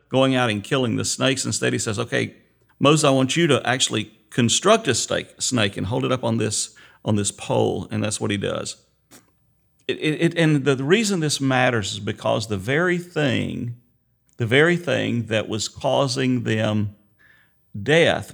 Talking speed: 175 wpm